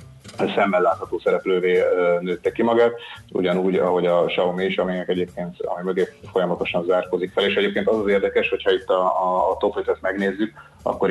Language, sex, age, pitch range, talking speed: Hungarian, male, 30-49, 90-105 Hz, 160 wpm